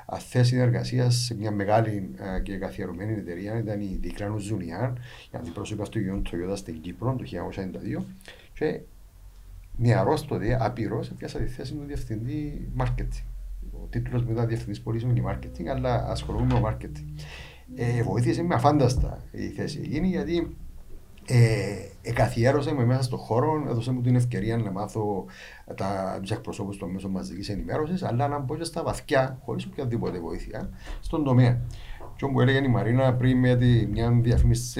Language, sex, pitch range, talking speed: English, male, 100-125 Hz, 150 wpm